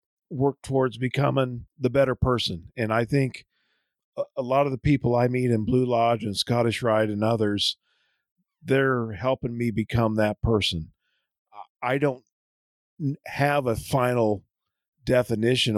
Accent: American